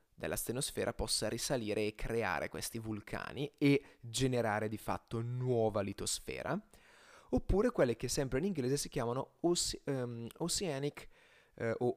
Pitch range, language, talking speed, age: 110-140 Hz, Italian, 135 wpm, 30-49